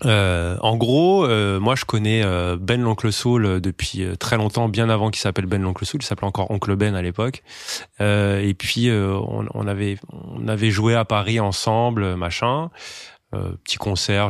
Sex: male